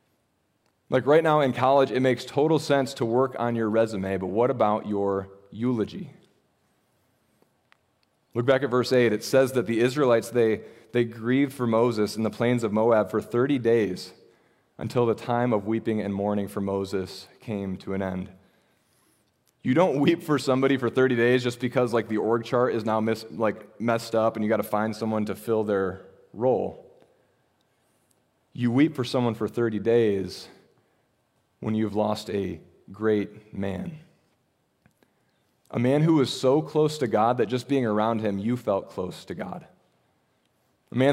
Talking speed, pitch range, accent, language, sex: 170 wpm, 105-125 Hz, American, English, male